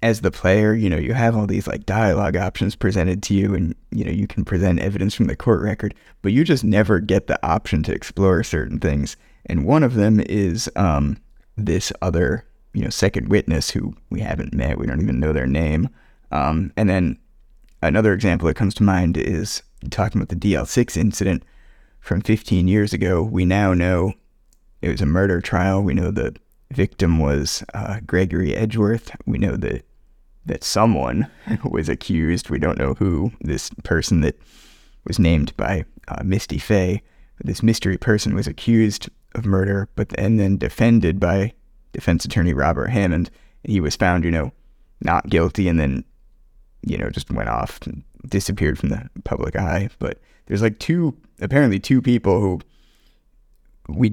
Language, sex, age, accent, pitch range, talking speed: English, male, 20-39, American, 85-110 Hz, 175 wpm